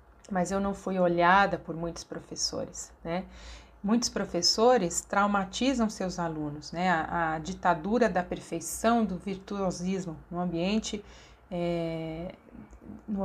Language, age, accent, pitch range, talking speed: Portuguese, 40-59, Brazilian, 175-225 Hz, 115 wpm